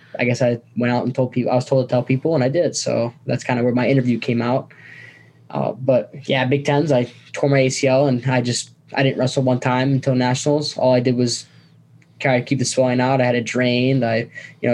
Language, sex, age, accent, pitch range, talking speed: English, male, 10-29, American, 120-140 Hz, 250 wpm